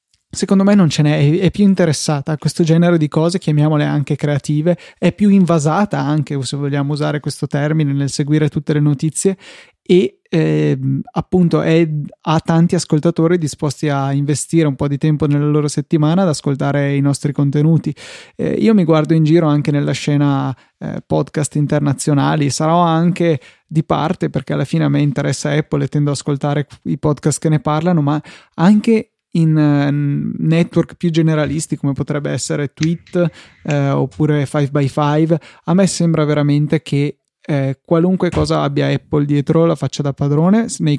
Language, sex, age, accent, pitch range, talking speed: Italian, male, 20-39, native, 145-170 Hz, 165 wpm